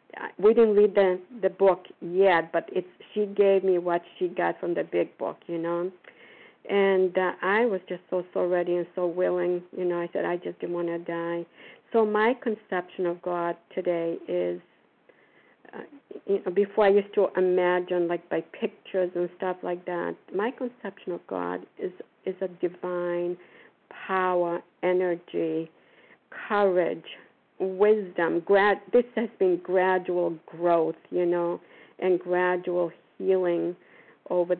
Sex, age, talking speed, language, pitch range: female, 50-69, 150 wpm, English, 175-190 Hz